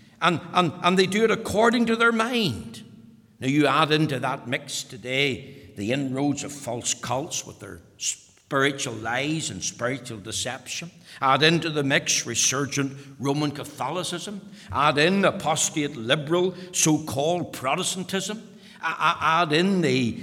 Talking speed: 135 wpm